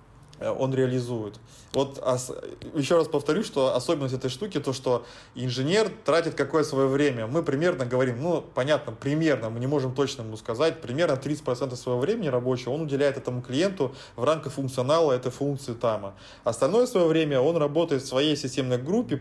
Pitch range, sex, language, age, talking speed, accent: 125-145 Hz, male, Russian, 20-39, 165 wpm, native